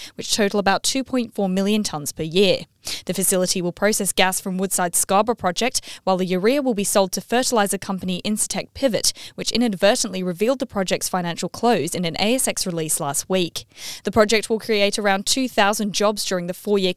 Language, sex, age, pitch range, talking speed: English, female, 10-29, 185-220 Hz, 180 wpm